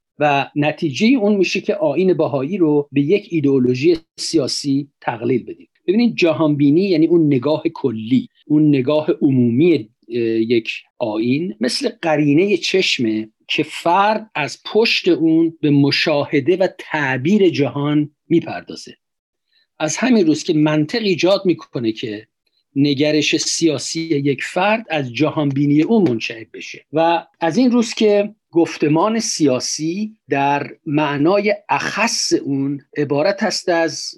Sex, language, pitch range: male, Persian, 145-190 Hz